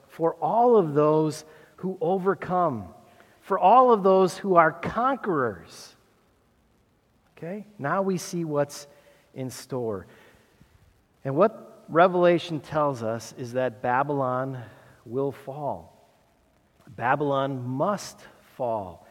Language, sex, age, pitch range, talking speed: English, male, 50-69, 145-205 Hz, 105 wpm